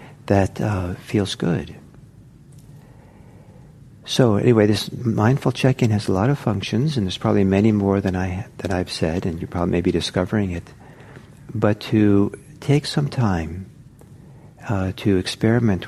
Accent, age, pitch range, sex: American, 50-69, 95-135 Hz, male